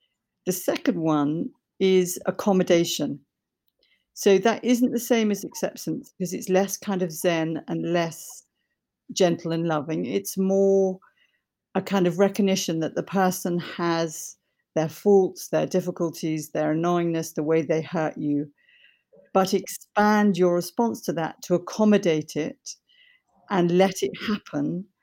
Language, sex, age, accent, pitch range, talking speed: English, female, 50-69, British, 165-200 Hz, 135 wpm